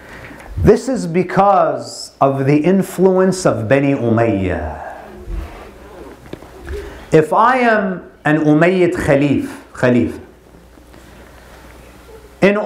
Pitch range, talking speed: 185-260 Hz, 75 wpm